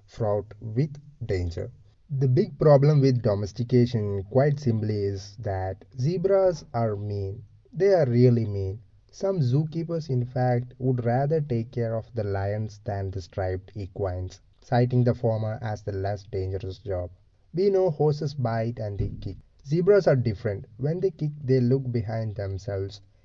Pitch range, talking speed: 100-130 Hz, 150 wpm